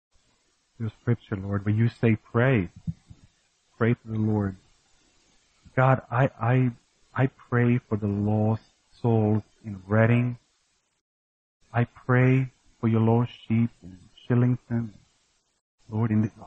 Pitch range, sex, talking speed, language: 105-125 Hz, male, 120 wpm, English